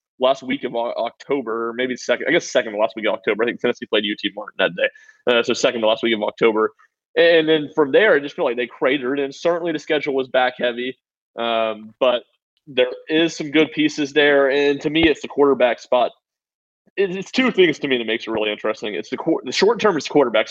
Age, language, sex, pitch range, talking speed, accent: 20-39, English, male, 125-165 Hz, 235 wpm, American